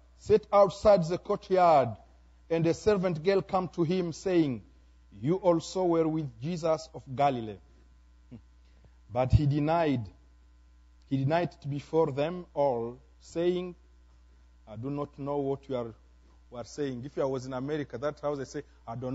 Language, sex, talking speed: English, male, 155 wpm